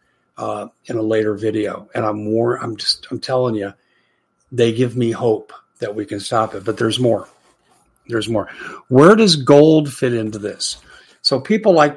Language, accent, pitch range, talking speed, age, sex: English, American, 115-135 Hz, 175 wpm, 50-69, male